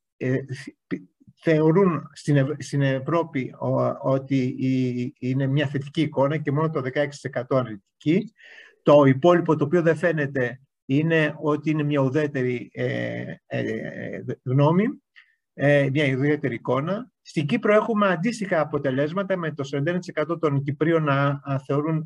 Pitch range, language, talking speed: 140-180 Hz, Greek, 110 wpm